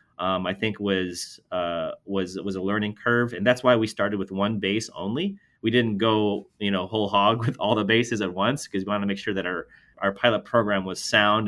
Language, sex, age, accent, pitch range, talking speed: English, male, 30-49, American, 95-110 Hz, 235 wpm